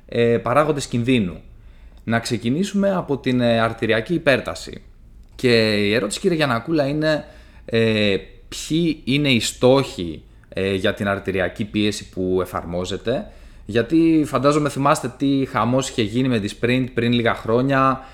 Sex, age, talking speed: male, 20-39, 130 wpm